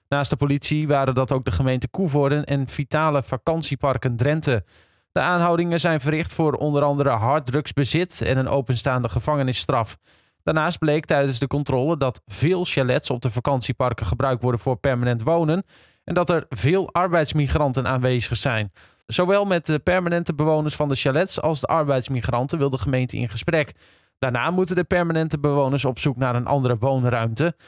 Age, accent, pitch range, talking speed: 20-39, Dutch, 130-160 Hz, 165 wpm